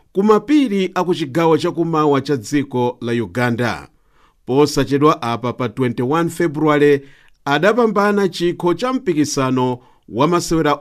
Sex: male